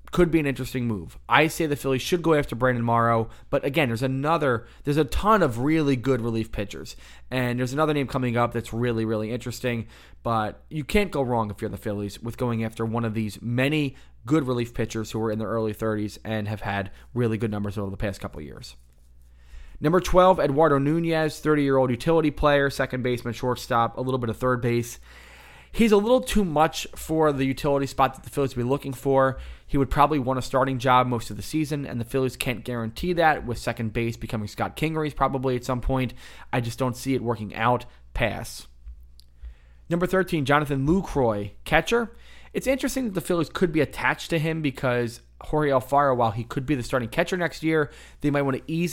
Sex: male